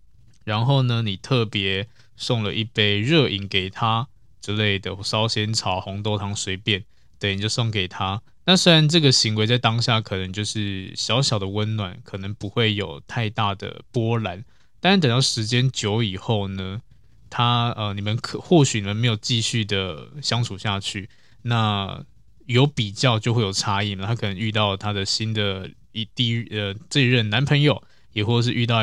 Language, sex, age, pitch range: Chinese, male, 20-39, 105-120 Hz